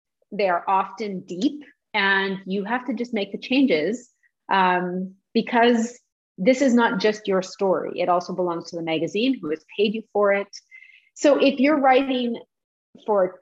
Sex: female